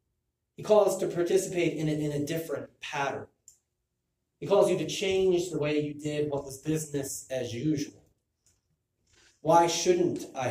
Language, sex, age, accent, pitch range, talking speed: English, male, 30-49, American, 125-175 Hz, 155 wpm